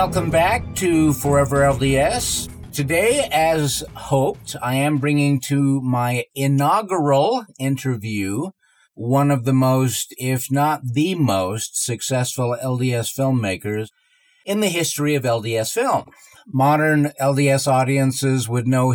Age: 50-69